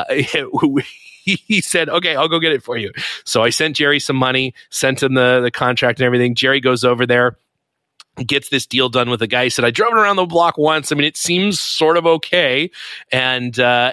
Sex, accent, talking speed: male, American, 220 wpm